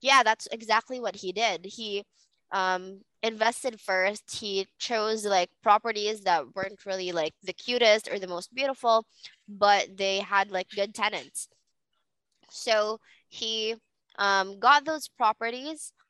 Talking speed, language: 135 wpm, English